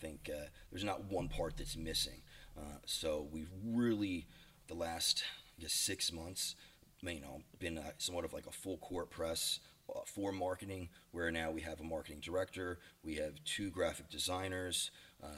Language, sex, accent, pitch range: English, male, American, 80-95 Hz